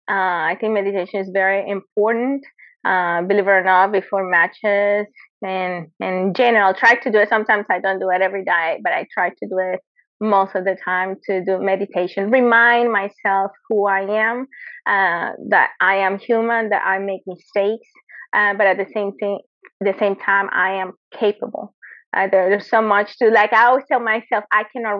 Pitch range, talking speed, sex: 195-230 Hz, 200 wpm, female